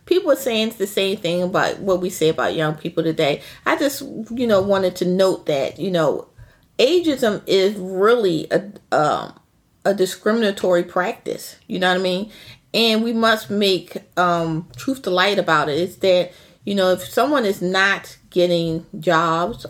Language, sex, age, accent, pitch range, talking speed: English, female, 30-49, American, 165-195 Hz, 180 wpm